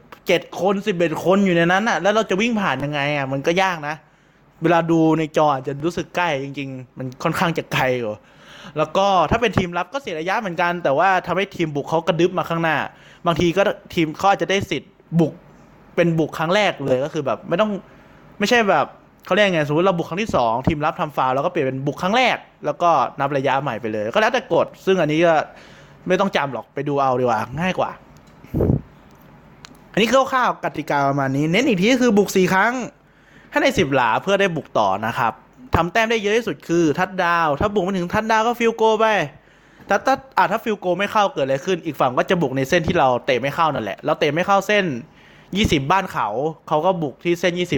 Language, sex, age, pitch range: Thai, male, 20-39, 150-195 Hz